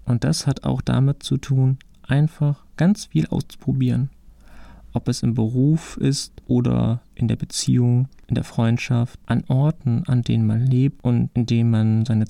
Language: German